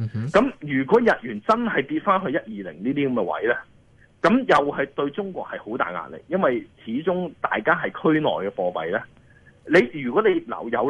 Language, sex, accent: Chinese, male, native